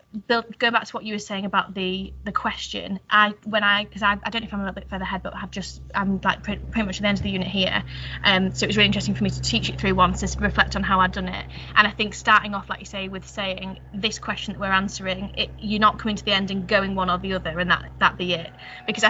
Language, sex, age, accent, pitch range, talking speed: English, female, 20-39, British, 185-210 Hz, 305 wpm